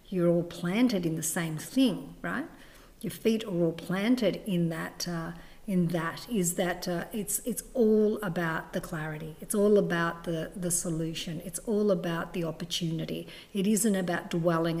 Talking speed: 170 wpm